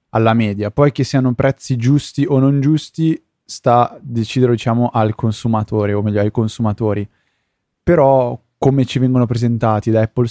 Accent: native